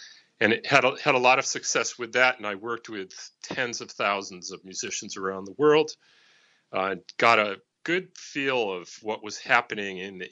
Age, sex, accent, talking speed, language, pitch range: 40-59, male, American, 205 wpm, English, 100-125 Hz